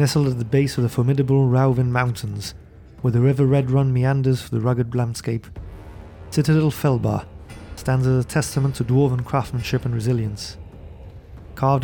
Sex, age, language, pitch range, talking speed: male, 30-49, English, 95-130 Hz, 155 wpm